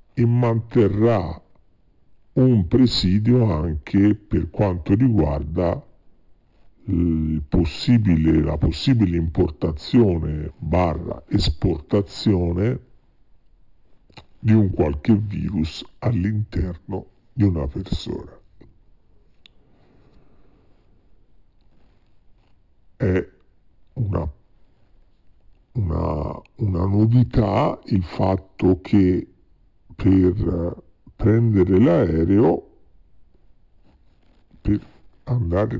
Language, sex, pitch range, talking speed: Italian, female, 85-110 Hz, 60 wpm